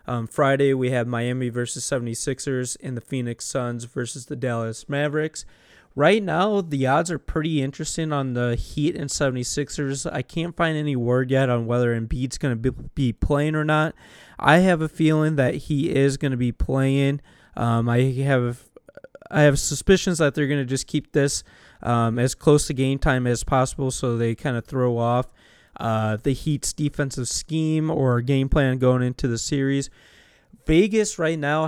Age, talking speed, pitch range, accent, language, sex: 20-39, 180 wpm, 125-150 Hz, American, English, male